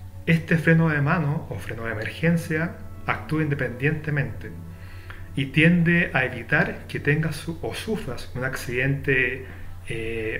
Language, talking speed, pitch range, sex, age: Spanish, 125 wpm, 95-145 Hz, male, 30-49